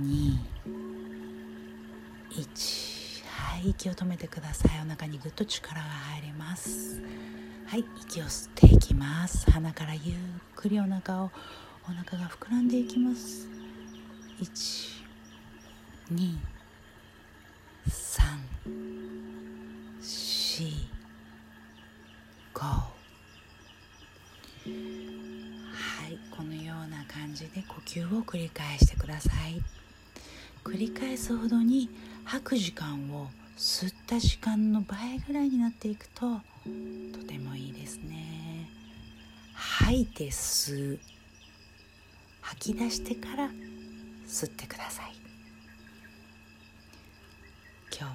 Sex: female